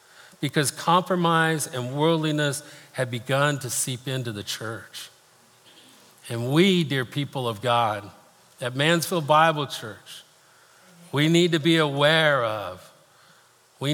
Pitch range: 120-155 Hz